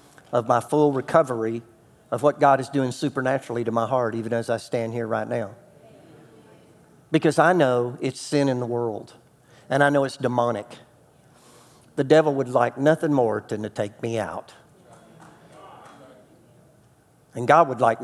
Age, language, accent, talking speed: 50-69, English, American, 160 wpm